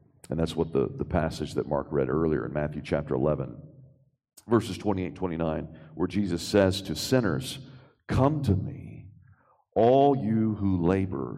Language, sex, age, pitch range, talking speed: English, male, 50-69, 85-110 Hz, 150 wpm